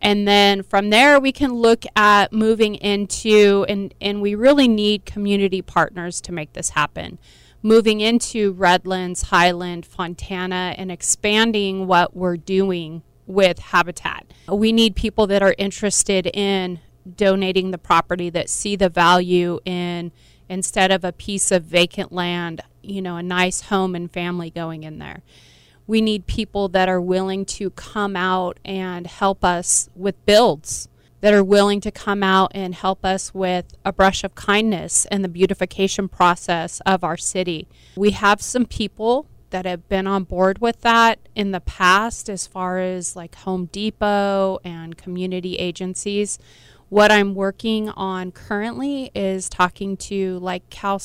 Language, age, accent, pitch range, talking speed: English, 30-49, American, 180-205 Hz, 155 wpm